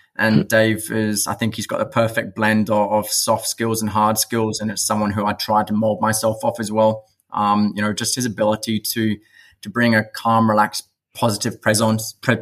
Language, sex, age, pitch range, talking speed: French, male, 20-39, 105-110 Hz, 210 wpm